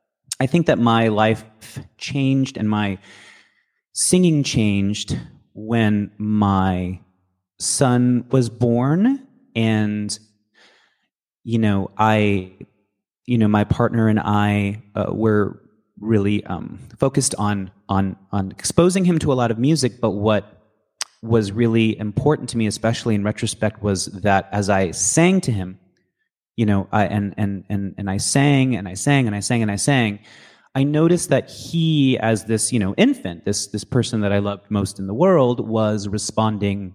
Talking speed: 155 wpm